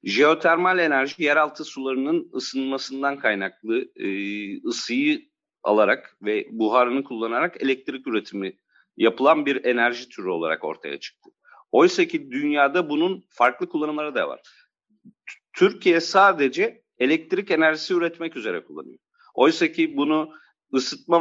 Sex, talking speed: male, 110 wpm